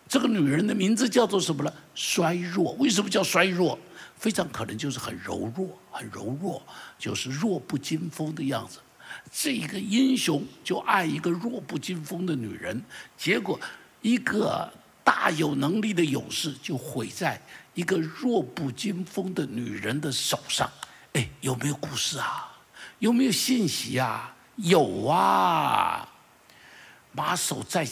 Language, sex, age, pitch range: Chinese, male, 60-79, 135-195 Hz